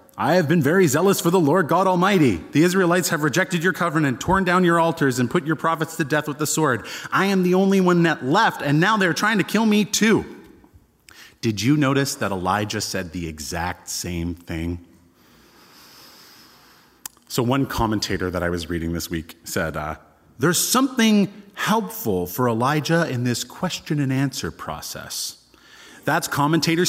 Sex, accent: male, American